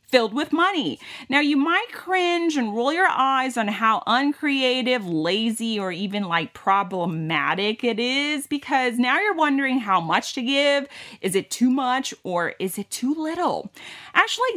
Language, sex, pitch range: Thai, female, 175-265 Hz